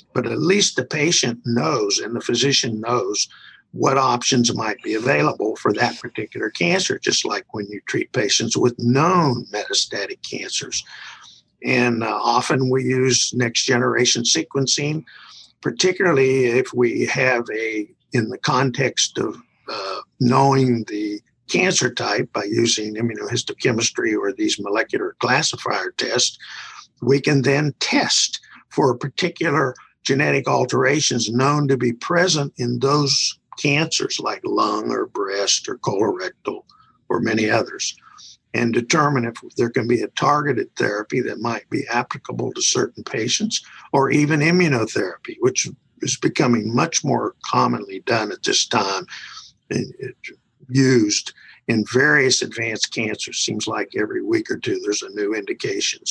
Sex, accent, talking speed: male, American, 140 wpm